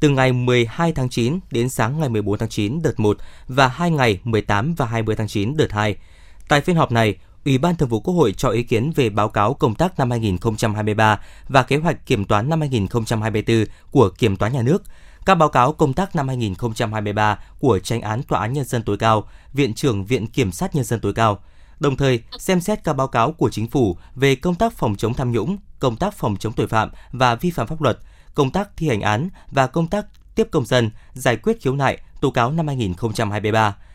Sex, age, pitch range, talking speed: male, 20-39, 110-150 Hz, 225 wpm